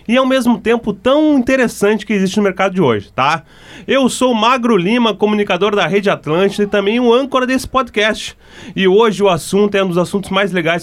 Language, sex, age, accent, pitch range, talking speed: English, male, 30-49, Brazilian, 165-215 Hz, 210 wpm